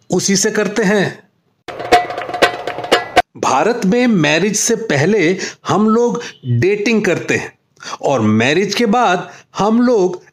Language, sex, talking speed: Hindi, male, 115 wpm